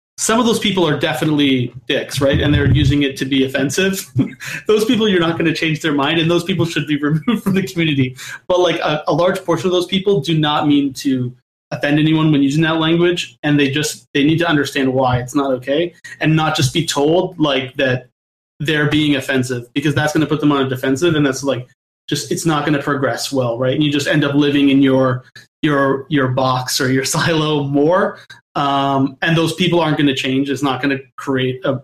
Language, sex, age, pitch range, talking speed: English, male, 30-49, 135-165 Hz, 230 wpm